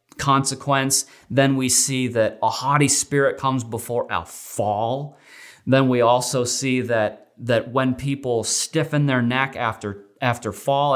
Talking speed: 140 wpm